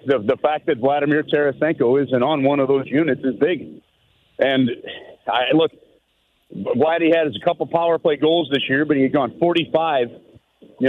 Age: 50-69